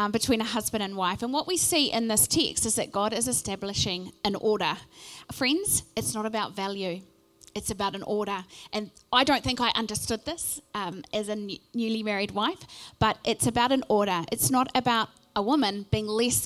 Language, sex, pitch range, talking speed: English, female, 215-265 Hz, 195 wpm